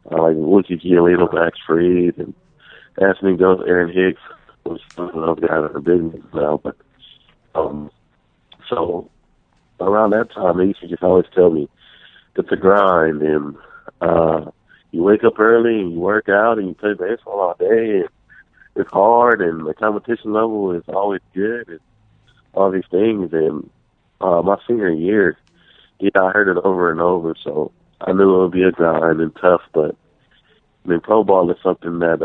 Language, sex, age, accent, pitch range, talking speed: English, male, 50-69, American, 85-95 Hz, 175 wpm